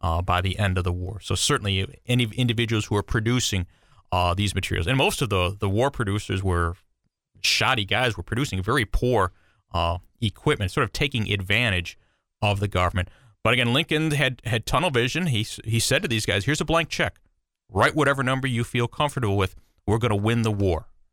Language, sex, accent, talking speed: English, male, American, 200 wpm